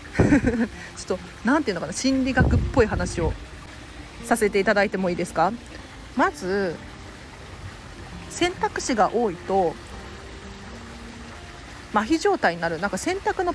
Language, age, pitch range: Japanese, 40-59, 195-325 Hz